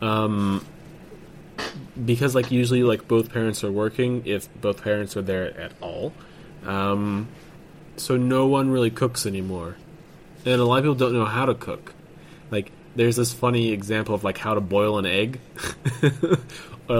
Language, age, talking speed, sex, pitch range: English, 20-39, 160 wpm, male, 110-165 Hz